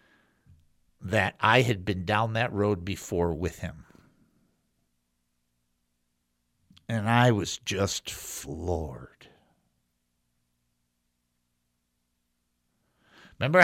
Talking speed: 70 wpm